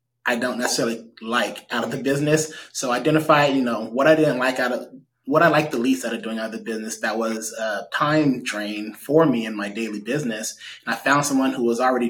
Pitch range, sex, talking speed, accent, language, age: 115-135 Hz, male, 245 wpm, American, English, 20-39